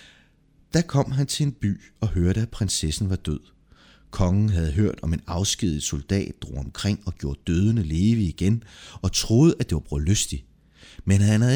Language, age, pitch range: Danish, 30-49, 85-115 Hz